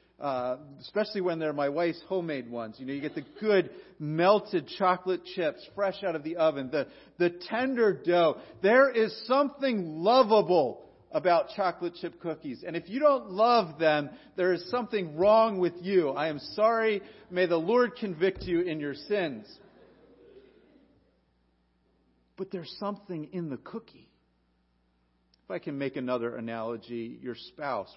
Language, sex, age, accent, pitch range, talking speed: English, male, 40-59, American, 135-195 Hz, 150 wpm